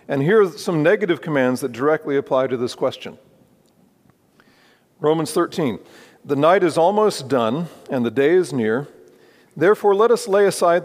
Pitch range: 135-175 Hz